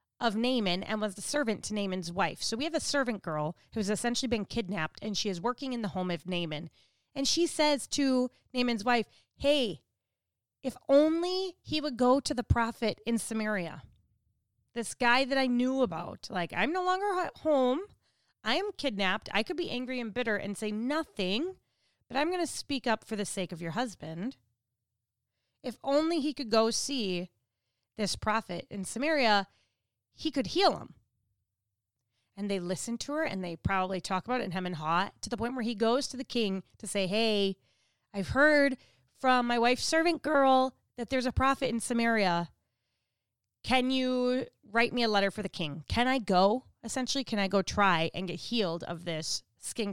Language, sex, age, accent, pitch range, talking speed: English, female, 30-49, American, 175-255 Hz, 190 wpm